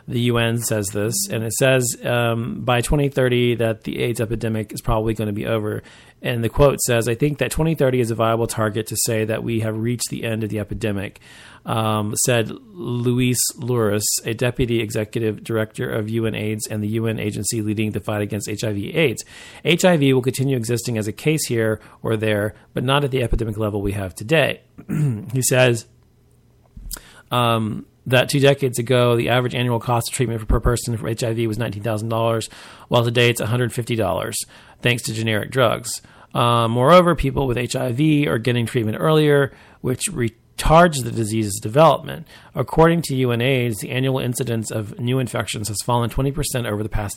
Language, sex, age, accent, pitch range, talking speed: English, male, 40-59, American, 110-130 Hz, 180 wpm